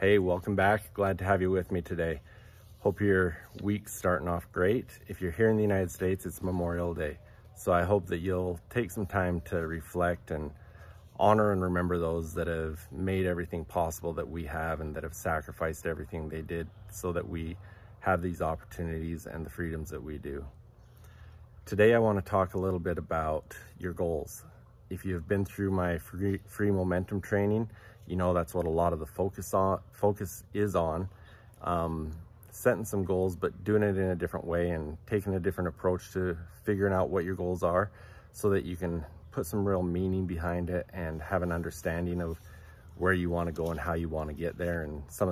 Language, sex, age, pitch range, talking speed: English, male, 30-49, 85-100 Hz, 200 wpm